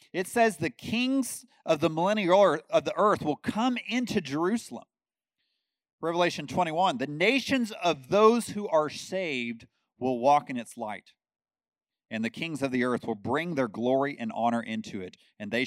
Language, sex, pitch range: English, male, 145-210 Hz